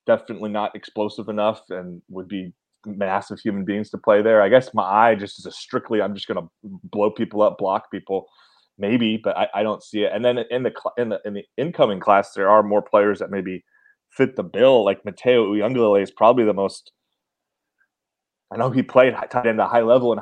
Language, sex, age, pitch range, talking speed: English, male, 20-39, 95-115 Hz, 215 wpm